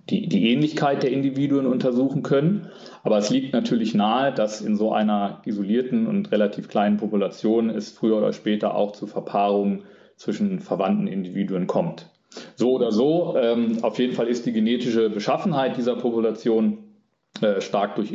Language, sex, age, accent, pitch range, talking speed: German, male, 30-49, German, 105-155 Hz, 160 wpm